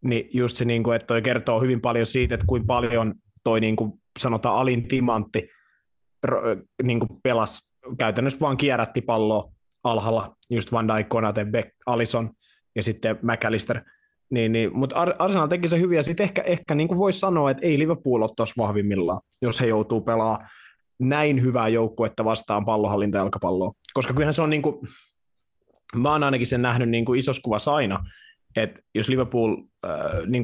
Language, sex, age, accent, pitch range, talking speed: Finnish, male, 20-39, native, 110-125 Hz, 155 wpm